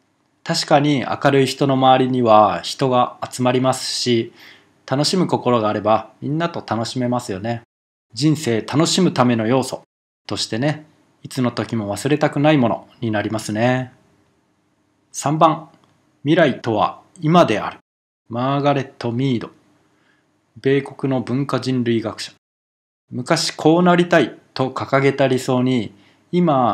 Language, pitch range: Japanese, 115-150 Hz